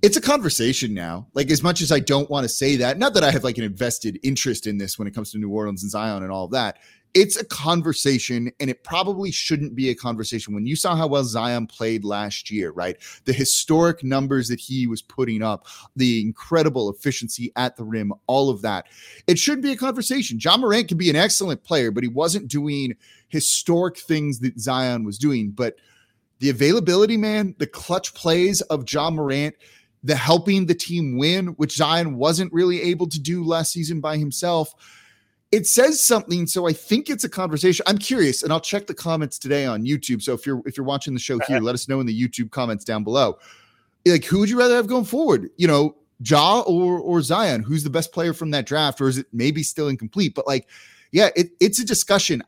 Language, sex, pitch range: English, male, 125-175 Hz